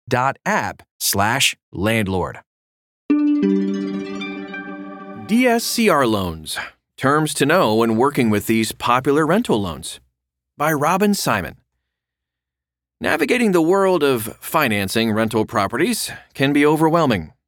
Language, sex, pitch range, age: English, male, 100-150 Hz, 30-49